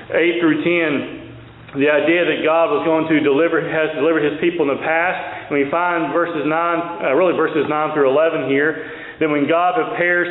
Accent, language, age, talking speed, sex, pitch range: American, English, 40-59, 200 wpm, male, 150-175 Hz